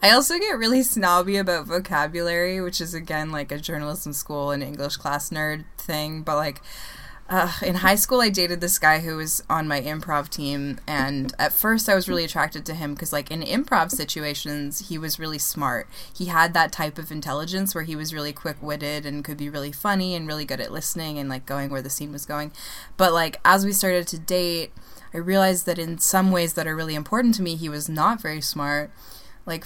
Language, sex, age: English, female, 20-39